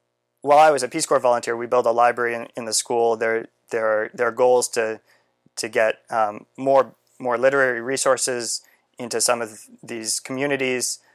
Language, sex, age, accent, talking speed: English, male, 20-39, American, 180 wpm